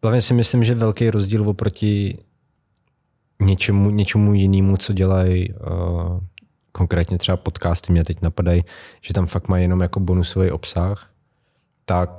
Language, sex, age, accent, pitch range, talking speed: Czech, male, 20-39, native, 90-100 Hz, 140 wpm